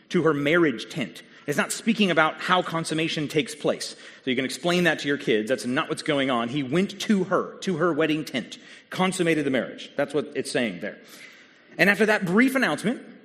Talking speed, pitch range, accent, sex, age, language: 210 wpm, 135-200 Hz, American, male, 30-49, English